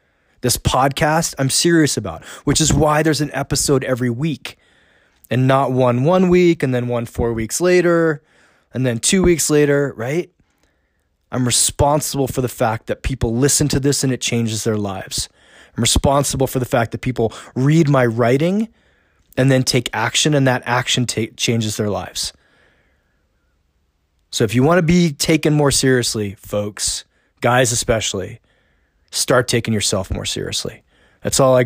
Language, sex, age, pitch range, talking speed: English, male, 20-39, 110-145 Hz, 160 wpm